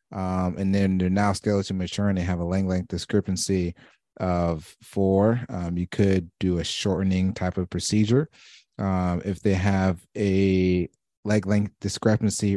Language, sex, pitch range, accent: English, male, 90-105 Hz, American